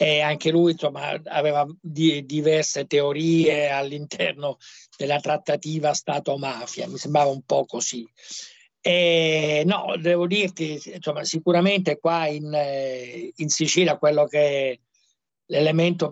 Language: Italian